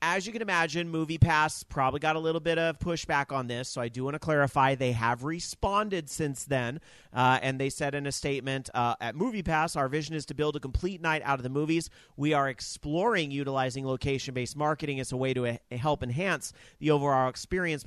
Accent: American